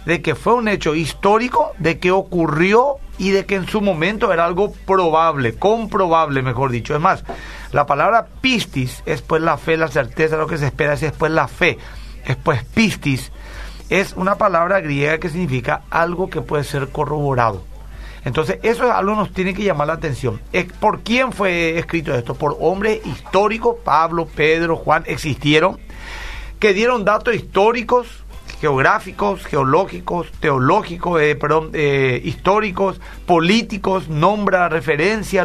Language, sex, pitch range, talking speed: Spanish, male, 155-210 Hz, 155 wpm